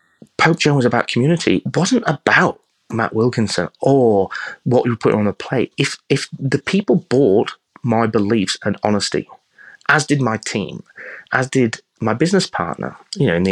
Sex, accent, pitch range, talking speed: male, British, 105-160 Hz, 170 wpm